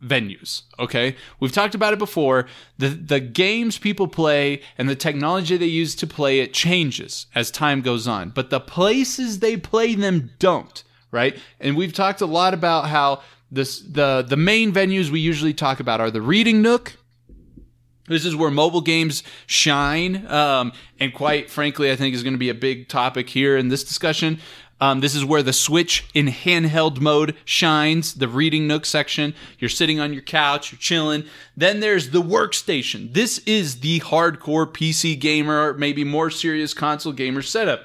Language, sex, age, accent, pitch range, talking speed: English, male, 20-39, American, 135-165 Hz, 180 wpm